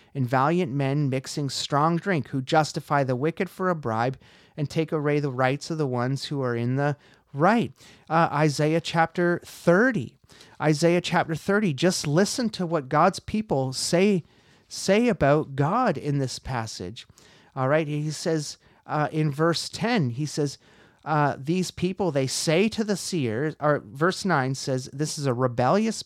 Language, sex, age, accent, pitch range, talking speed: English, male, 30-49, American, 135-180 Hz, 165 wpm